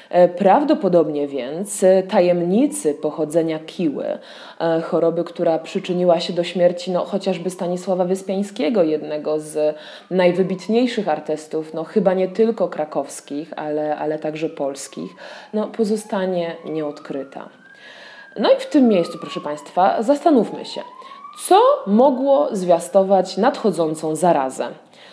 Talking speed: 100 wpm